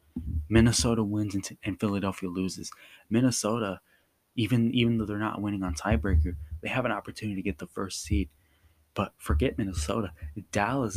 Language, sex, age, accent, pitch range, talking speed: English, male, 20-39, American, 90-110 Hz, 160 wpm